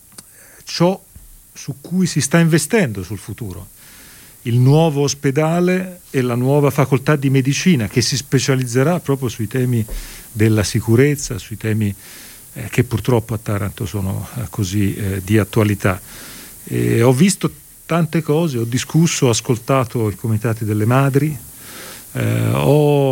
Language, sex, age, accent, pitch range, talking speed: Italian, male, 40-59, native, 110-140 Hz, 125 wpm